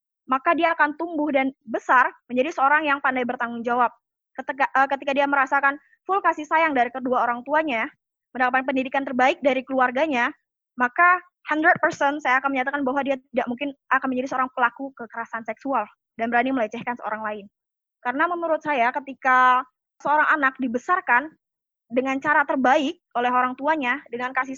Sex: female